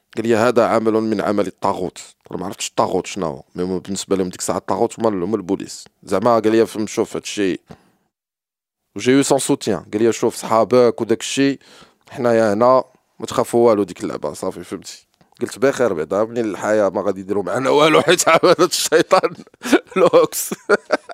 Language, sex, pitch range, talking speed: French, male, 100-160 Hz, 175 wpm